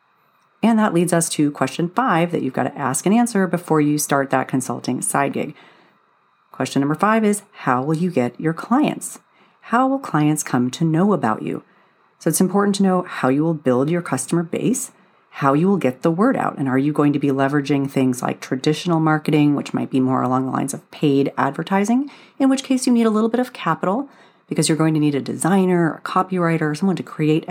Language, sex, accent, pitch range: English, female, American, 140-185 Hz